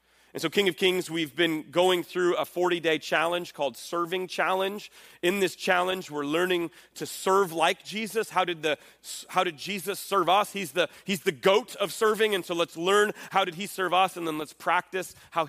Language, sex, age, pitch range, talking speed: English, male, 30-49, 155-185 Hz, 195 wpm